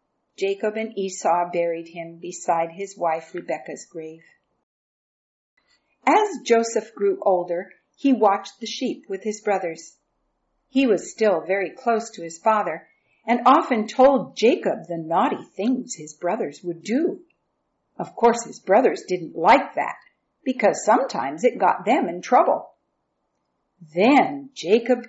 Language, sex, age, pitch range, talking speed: English, female, 50-69, 175-255 Hz, 135 wpm